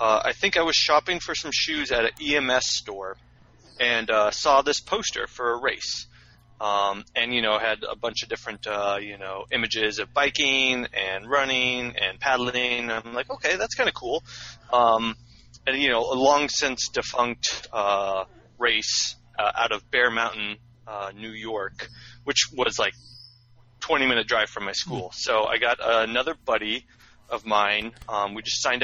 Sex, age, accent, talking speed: male, 30-49, American, 175 wpm